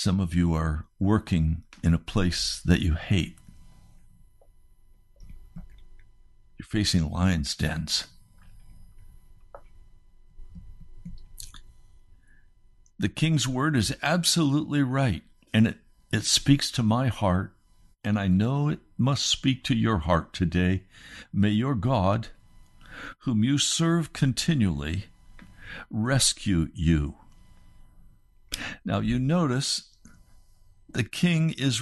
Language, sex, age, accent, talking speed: English, male, 60-79, American, 100 wpm